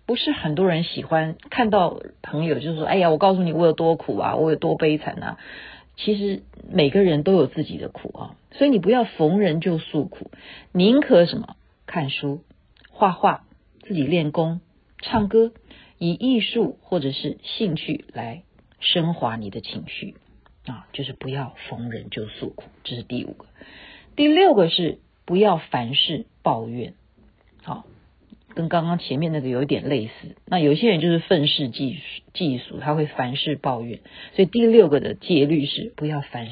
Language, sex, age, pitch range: Chinese, female, 50-69, 135-200 Hz